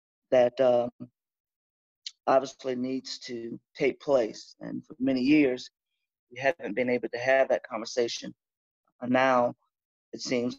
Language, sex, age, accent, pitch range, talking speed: English, male, 30-49, American, 120-145 Hz, 130 wpm